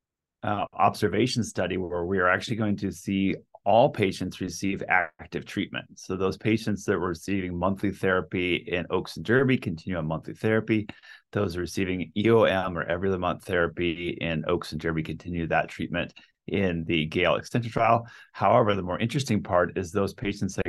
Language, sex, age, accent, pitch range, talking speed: English, male, 30-49, American, 85-100 Hz, 170 wpm